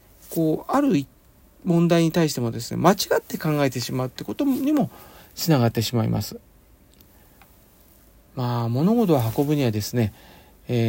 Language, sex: Japanese, male